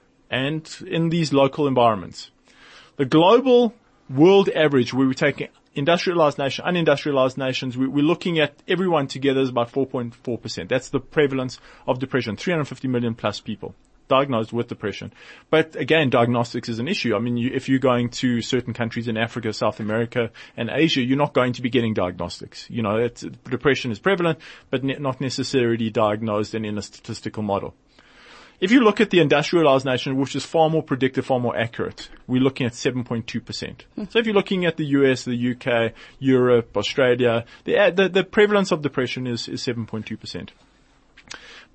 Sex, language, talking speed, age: male, English, 170 wpm, 30-49